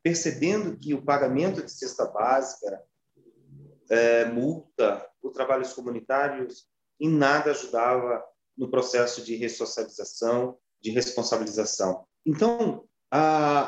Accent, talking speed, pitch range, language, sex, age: Brazilian, 100 wpm, 125-170 Hz, Portuguese, male, 30-49